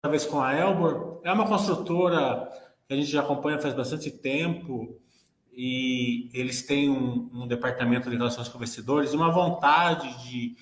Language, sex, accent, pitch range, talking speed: Portuguese, male, Brazilian, 125-150 Hz, 165 wpm